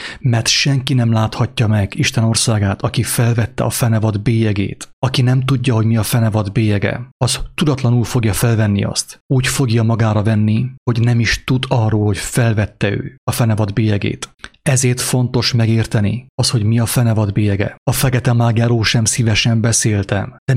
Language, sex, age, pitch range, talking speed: English, male, 30-49, 110-125 Hz, 165 wpm